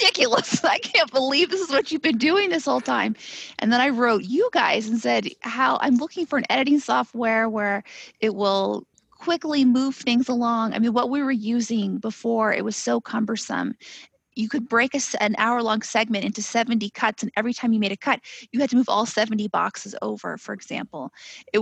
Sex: female